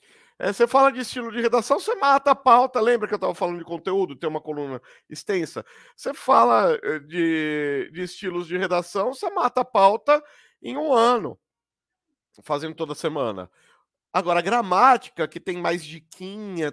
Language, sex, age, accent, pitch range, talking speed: Portuguese, male, 50-69, Brazilian, 175-280 Hz, 165 wpm